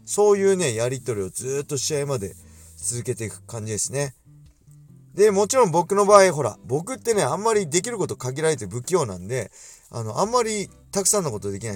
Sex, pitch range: male, 105-165 Hz